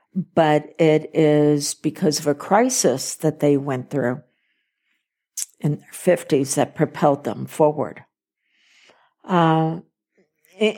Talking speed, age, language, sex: 110 wpm, 60-79, English, female